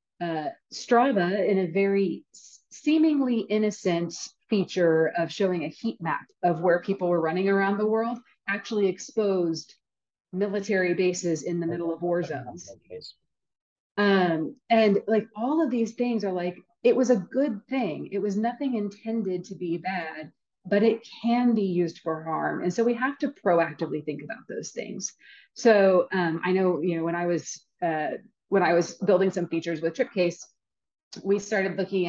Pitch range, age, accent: 170-225 Hz, 30-49, American